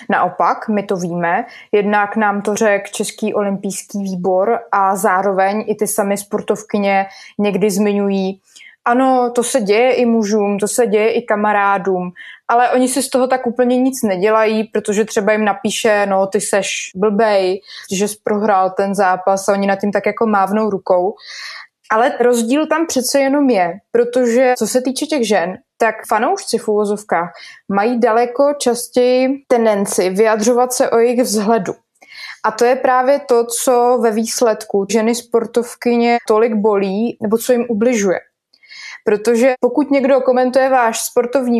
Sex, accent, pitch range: female, native, 200-235 Hz